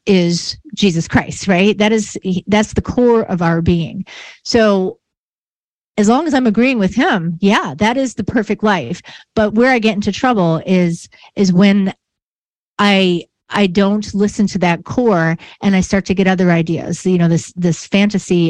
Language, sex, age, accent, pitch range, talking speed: English, female, 40-59, American, 170-210 Hz, 175 wpm